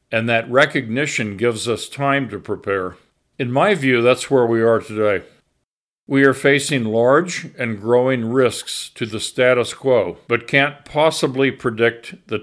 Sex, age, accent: male, 50-69, American